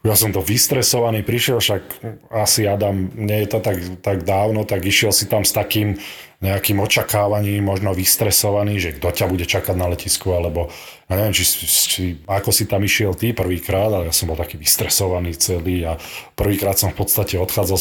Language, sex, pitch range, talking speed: Slovak, male, 95-115 Hz, 185 wpm